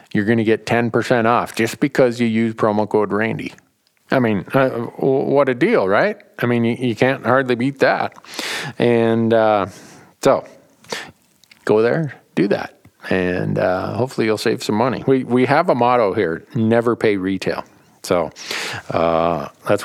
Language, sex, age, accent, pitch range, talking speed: English, male, 50-69, American, 95-120 Hz, 165 wpm